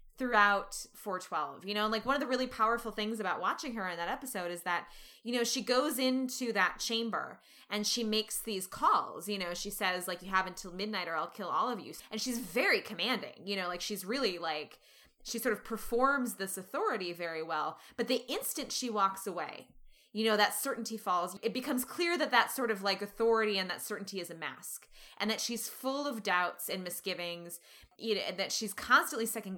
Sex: female